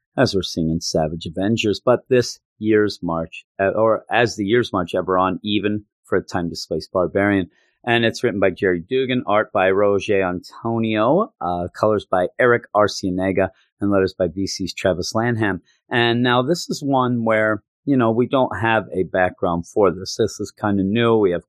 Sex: male